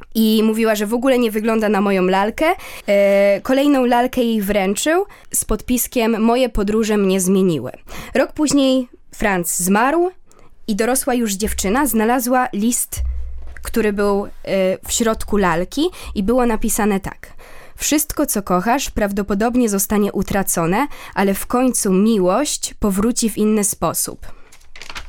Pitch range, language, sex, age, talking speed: 195-235 Hz, Polish, female, 20-39, 125 wpm